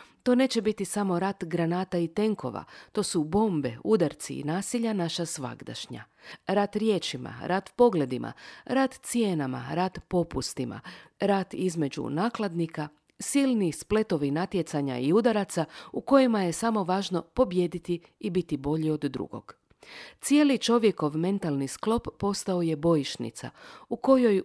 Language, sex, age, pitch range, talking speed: Croatian, female, 50-69, 160-225 Hz, 130 wpm